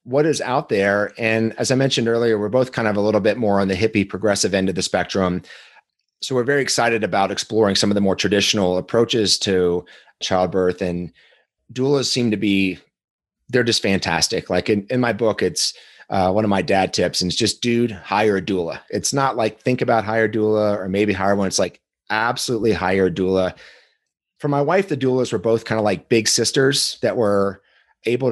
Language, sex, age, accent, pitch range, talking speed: English, male, 30-49, American, 100-120 Hz, 210 wpm